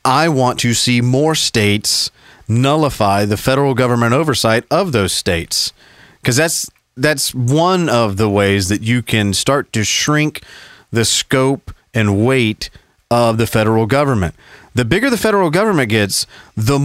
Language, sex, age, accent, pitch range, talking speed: English, male, 40-59, American, 110-155 Hz, 150 wpm